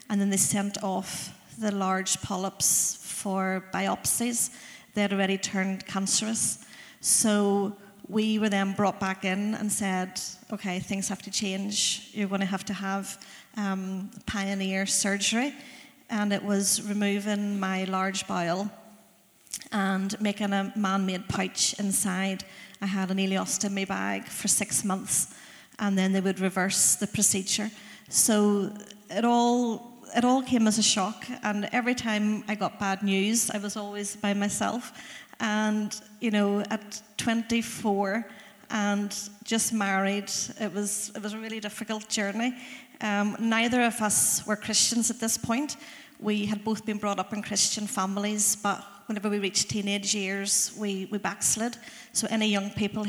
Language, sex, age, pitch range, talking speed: English, female, 40-59, 195-220 Hz, 150 wpm